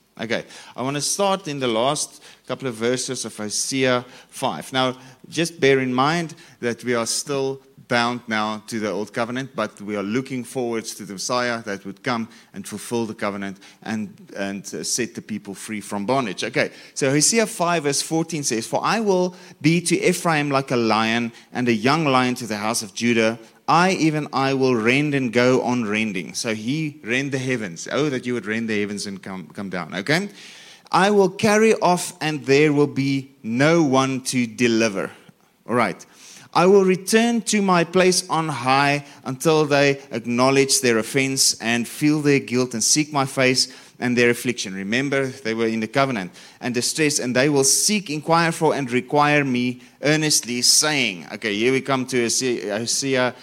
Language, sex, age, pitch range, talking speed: English, male, 30-49, 115-150 Hz, 185 wpm